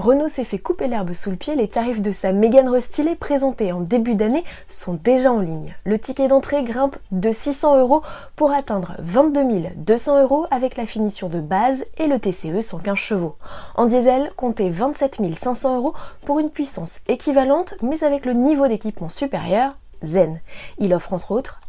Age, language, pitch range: 20-39, French, 190-270 Hz